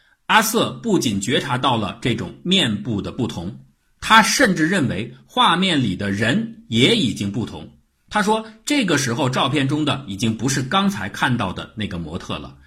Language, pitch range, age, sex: Chinese, 95-145 Hz, 50-69, male